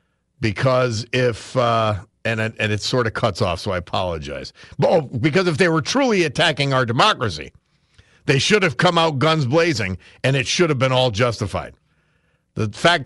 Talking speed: 185 wpm